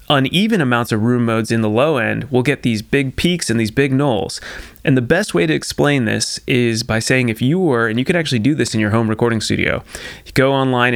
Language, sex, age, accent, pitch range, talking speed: English, male, 30-49, American, 115-150 Hz, 240 wpm